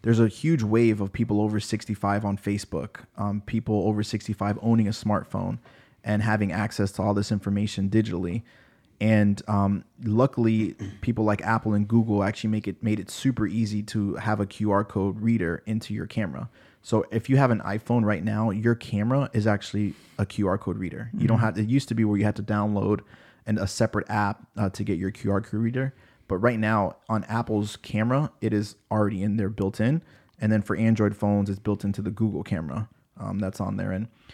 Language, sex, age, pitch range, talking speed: English, male, 20-39, 100-115 Hz, 205 wpm